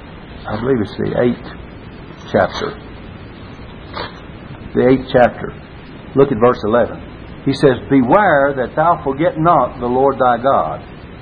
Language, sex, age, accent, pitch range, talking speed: English, male, 60-79, American, 115-150 Hz, 130 wpm